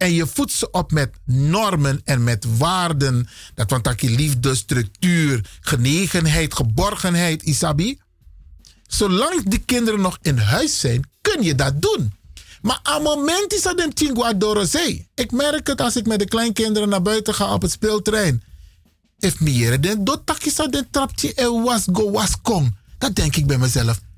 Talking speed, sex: 160 wpm, male